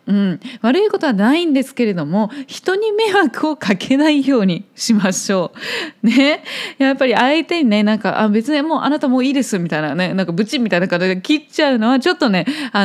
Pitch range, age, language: 210-300 Hz, 20-39, Japanese